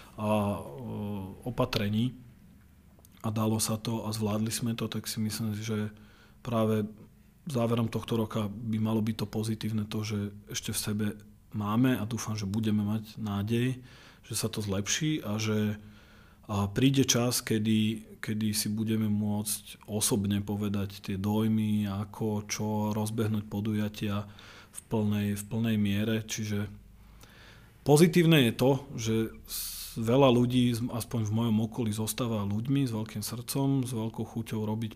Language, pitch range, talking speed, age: Slovak, 105-120 Hz, 140 wpm, 40-59